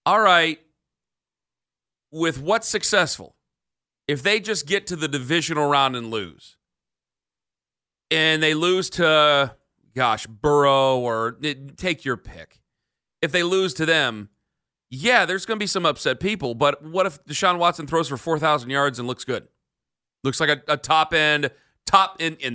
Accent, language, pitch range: American, English, 125-170 Hz